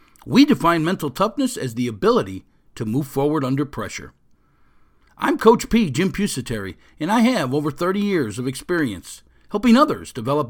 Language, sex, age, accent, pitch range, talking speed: English, male, 50-69, American, 125-195 Hz, 160 wpm